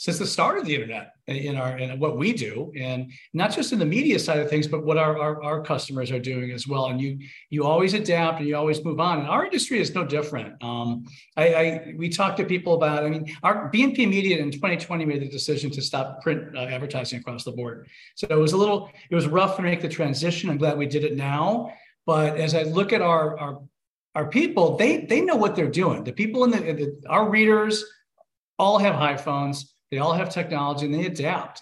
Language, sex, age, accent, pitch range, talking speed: English, male, 40-59, American, 140-180 Hz, 235 wpm